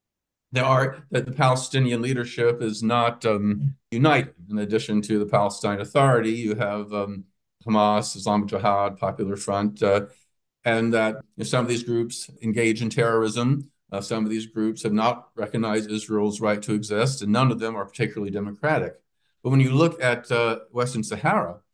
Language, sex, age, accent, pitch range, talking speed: English, male, 50-69, American, 110-140 Hz, 175 wpm